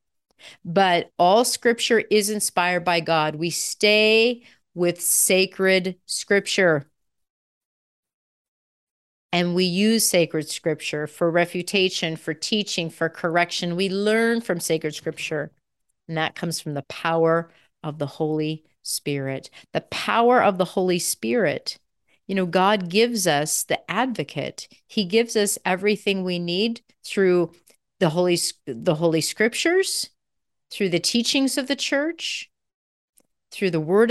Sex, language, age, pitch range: female, English, 40-59, 165-215 Hz